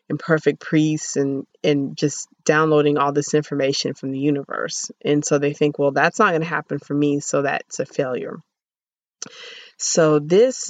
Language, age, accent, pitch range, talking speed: English, 30-49, American, 150-170 Hz, 170 wpm